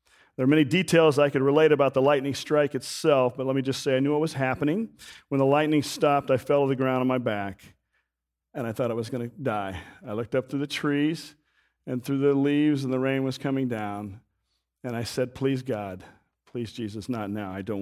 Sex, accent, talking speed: male, American, 230 wpm